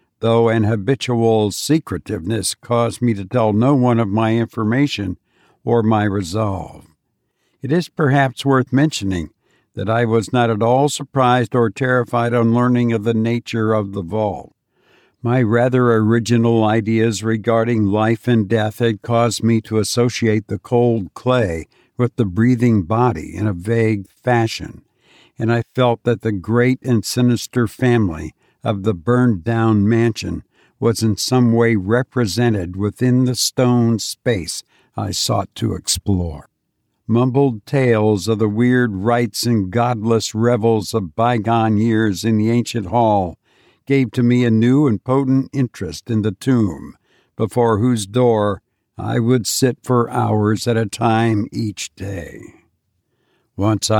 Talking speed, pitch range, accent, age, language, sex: 145 wpm, 110-120 Hz, American, 60-79, English, male